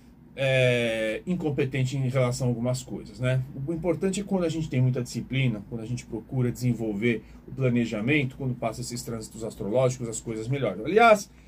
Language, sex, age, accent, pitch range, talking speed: Portuguese, male, 40-59, Brazilian, 125-160 Hz, 175 wpm